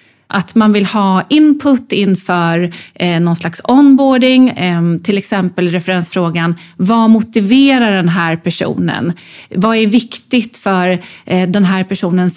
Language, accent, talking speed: Swedish, native, 115 wpm